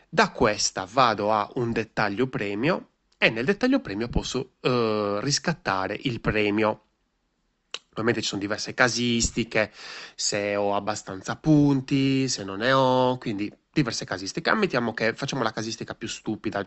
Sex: male